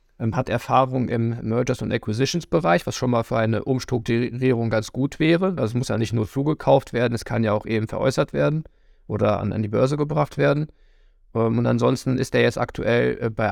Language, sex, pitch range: German, male, 110-130 Hz